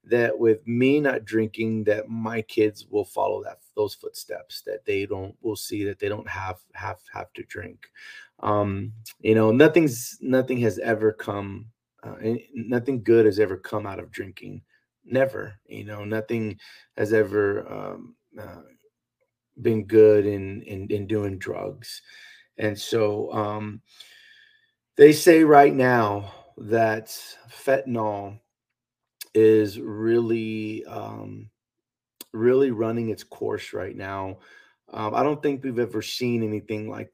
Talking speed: 135 wpm